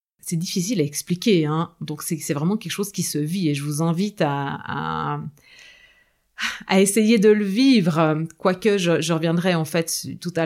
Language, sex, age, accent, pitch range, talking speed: French, female, 30-49, French, 180-270 Hz, 180 wpm